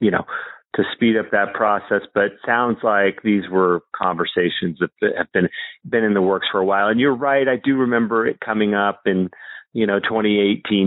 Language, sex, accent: English, male, American